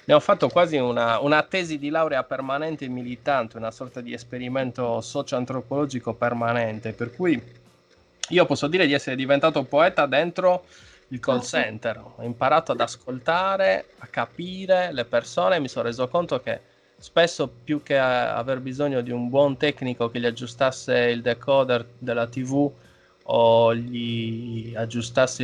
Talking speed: 150 wpm